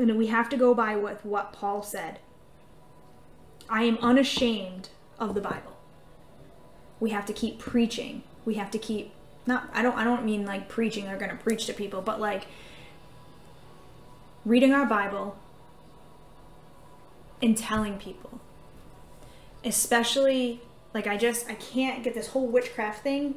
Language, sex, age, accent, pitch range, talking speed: English, female, 10-29, American, 220-265 Hz, 150 wpm